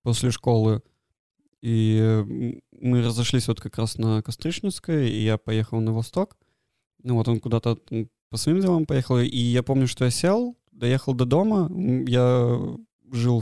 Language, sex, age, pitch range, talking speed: Russian, male, 20-39, 115-130 Hz, 150 wpm